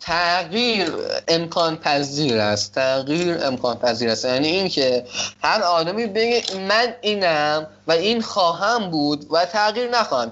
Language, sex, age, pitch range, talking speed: Persian, male, 20-39, 155-220 Hz, 135 wpm